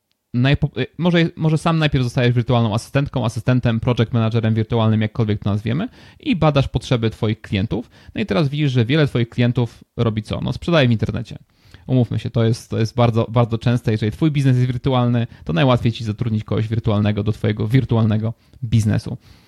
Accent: native